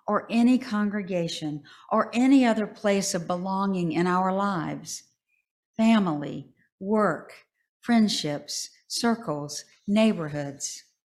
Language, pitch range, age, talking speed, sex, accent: English, 165-220 Hz, 50-69, 90 wpm, female, American